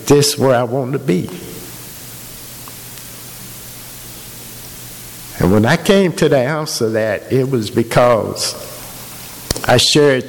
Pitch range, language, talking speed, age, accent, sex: 95-130 Hz, English, 120 wpm, 60-79, American, male